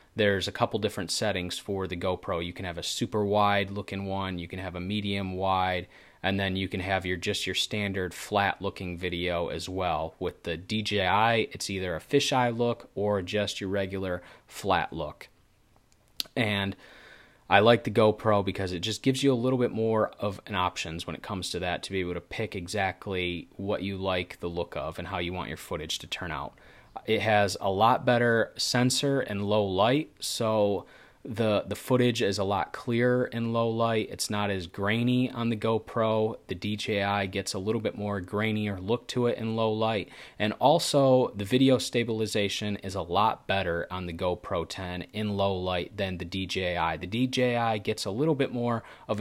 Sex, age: male, 30-49